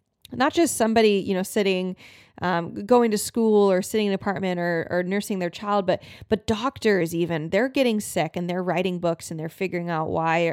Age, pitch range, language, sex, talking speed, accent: 20-39, 175-215 Hz, English, female, 205 wpm, American